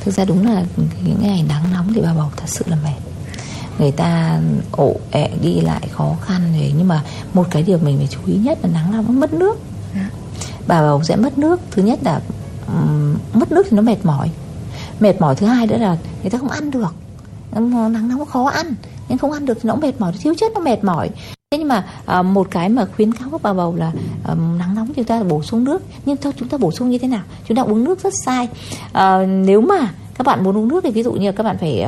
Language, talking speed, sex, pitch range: Vietnamese, 260 wpm, female, 175-270 Hz